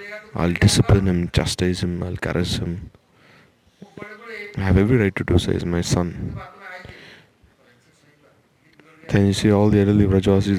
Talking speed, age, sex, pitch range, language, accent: 140 wpm, 20-39, male, 90-105 Hz, English, Indian